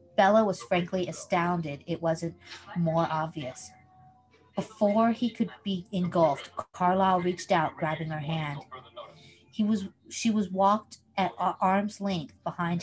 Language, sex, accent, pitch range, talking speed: English, female, American, 155-195 Hz, 130 wpm